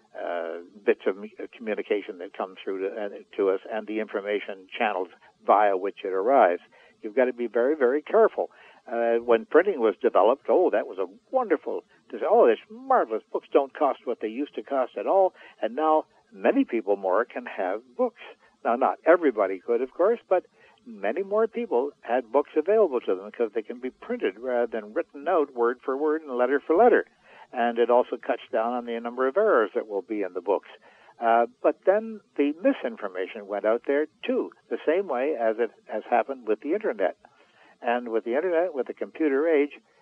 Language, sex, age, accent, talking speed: English, male, 60-79, American, 195 wpm